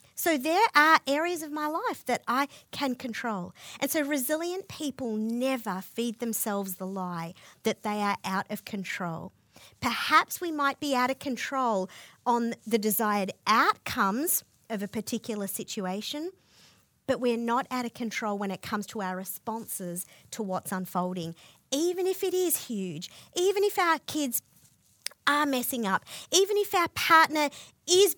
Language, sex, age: English, female, 40-59